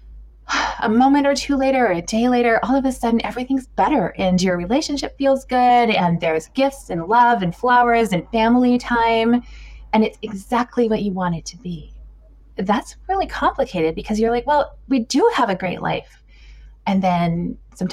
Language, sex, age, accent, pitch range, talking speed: English, female, 20-39, American, 175-245 Hz, 185 wpm